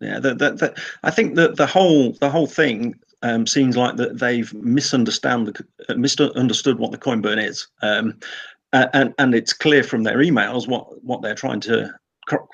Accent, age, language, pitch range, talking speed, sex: British, 40-59, English, 115-140 Hz, 180 wpm, male